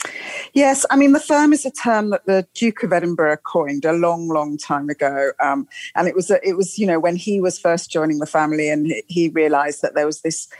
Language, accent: English, British